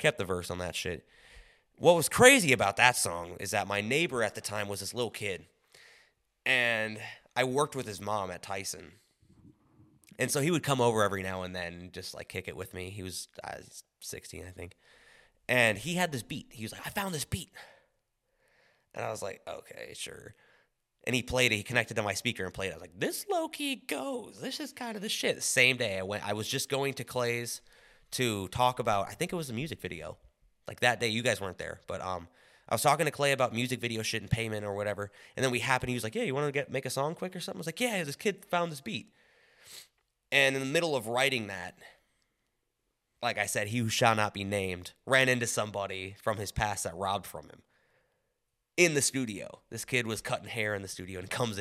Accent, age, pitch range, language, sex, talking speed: American, 20-39, 100-140 Hz, English, male, 240 wpm